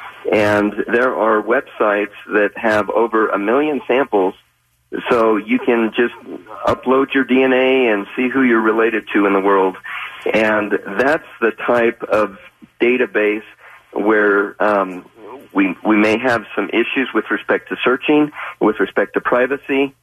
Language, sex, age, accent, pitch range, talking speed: English, male, 40-59, American, 105-130 Hz, 145 wpm